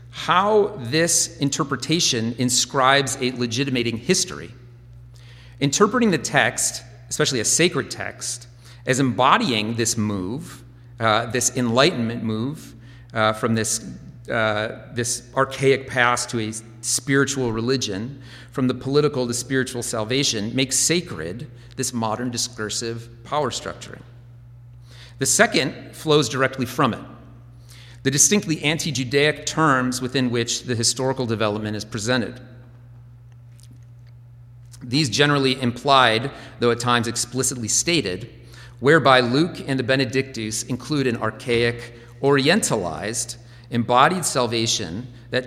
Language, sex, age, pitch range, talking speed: English, male, 40-59, 120-135 Hz, 110 wpm